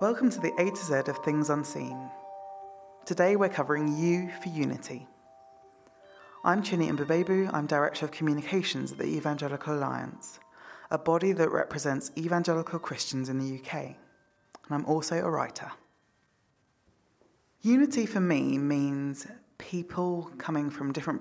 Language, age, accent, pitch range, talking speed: English, 20-39, British, 135-165 Hz, 135 wpm